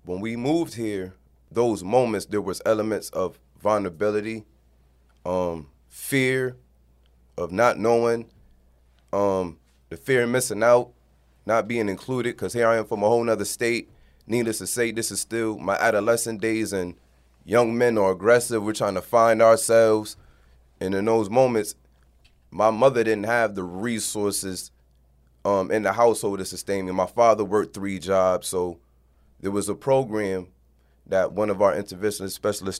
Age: 20-39